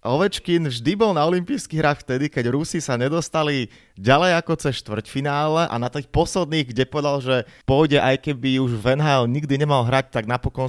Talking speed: 185 wpm